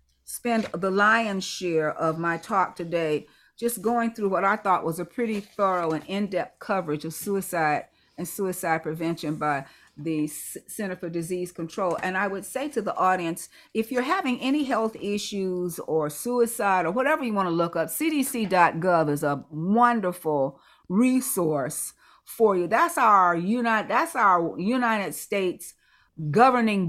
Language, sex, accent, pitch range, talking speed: English, female, American, 165-225 Hz, 155 wpm